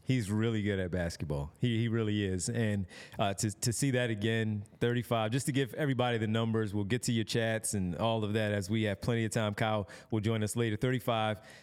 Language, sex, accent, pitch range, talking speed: English, male, American, 110-130 Hz, 225 wpm